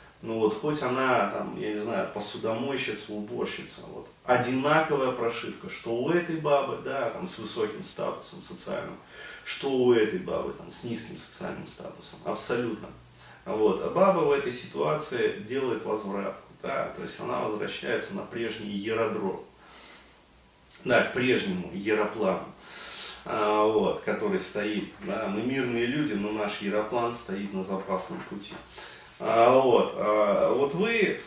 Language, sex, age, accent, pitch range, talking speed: Russian, male, 30-49, native, 105-140 Hz, 140 wpm